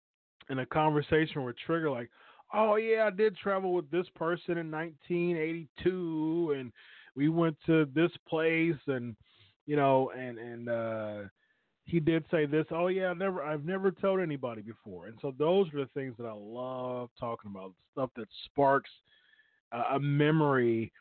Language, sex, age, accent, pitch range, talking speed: English, male, 30-49, American, 115-160 Hz, 165 wpm